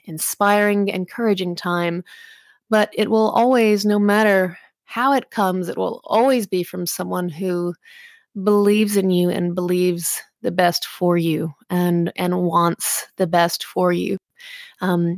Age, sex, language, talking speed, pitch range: 30-49, female, English, 140 wpm, 180-220 Hz